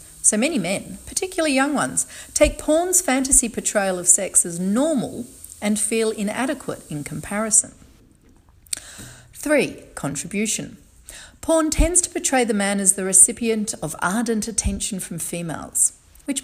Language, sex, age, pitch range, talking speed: English, female, 40-59, 180-250 Hz, 130 wpm